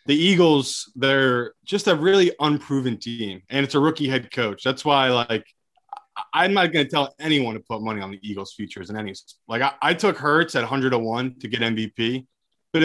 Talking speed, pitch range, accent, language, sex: 205 wpm, 115-155 Hz, American, English, male